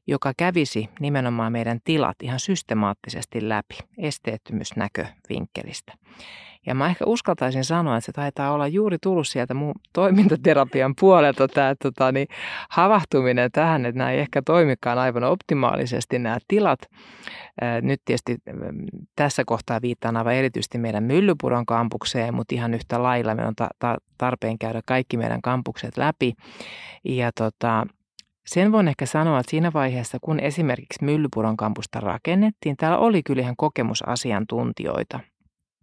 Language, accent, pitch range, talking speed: Finnish, native, 120-165 Hz, 130 wpm